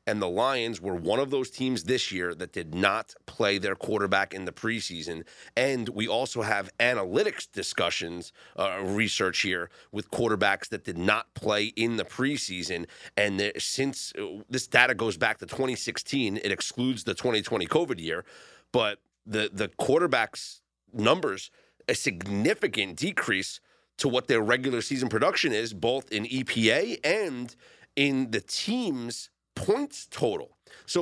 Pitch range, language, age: 110-160 Hz, English, 30-49